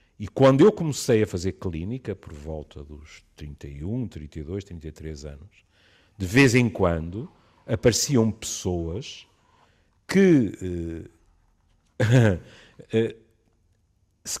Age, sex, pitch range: 50-69, male, 85-120 Hz